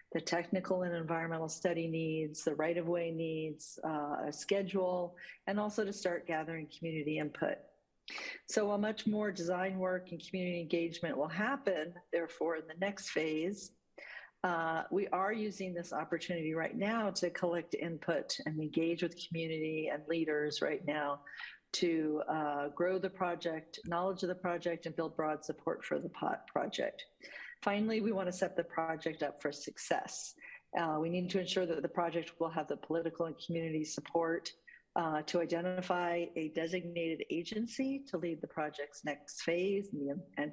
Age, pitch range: 50-69, 160-190 Hz